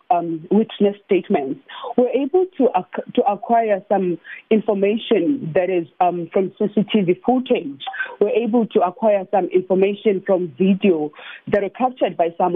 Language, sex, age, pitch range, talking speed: English, female, 40-59, 180-230 Hz, 145 wpm